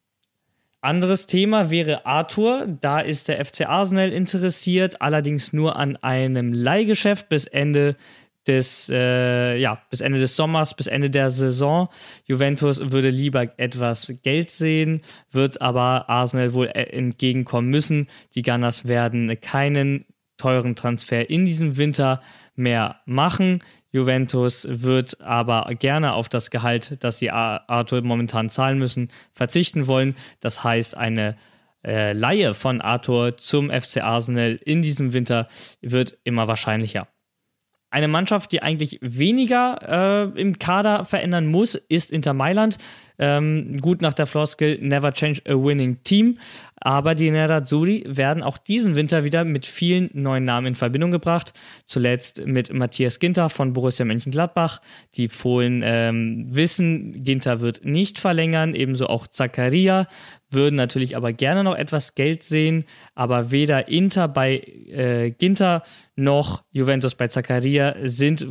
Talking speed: 135 wpm